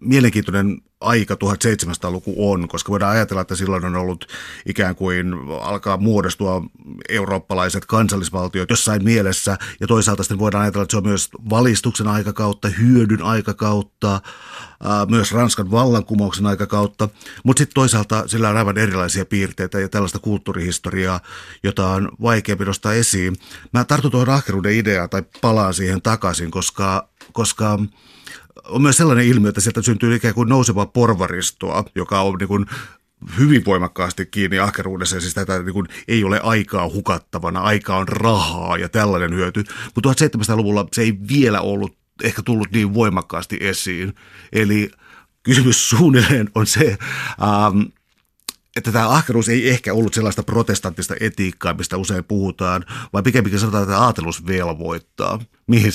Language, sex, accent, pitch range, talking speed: Finnish, male, native, 95-115 Hz, 140 wpm